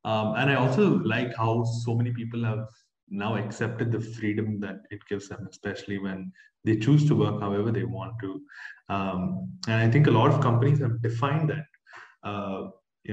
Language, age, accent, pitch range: English, 20-39, Indian, 100-120 Hz